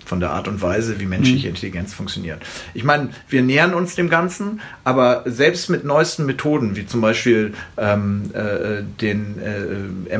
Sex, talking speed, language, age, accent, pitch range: male, 165 wpm, German, 40-59, German, 105-125 Hz